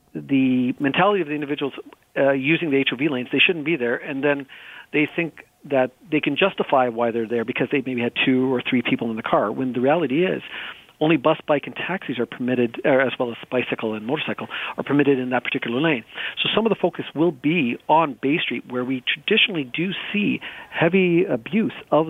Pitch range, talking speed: 130-165 Hz, 210 wpm